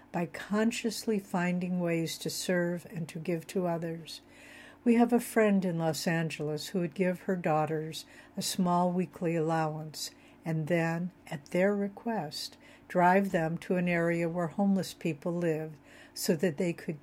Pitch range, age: 165-200 Hz, 60-79